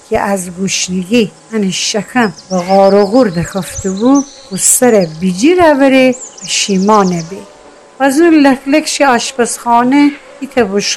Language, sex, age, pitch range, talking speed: Persian, female, 60-79, 195-275 Hz, 125 wpm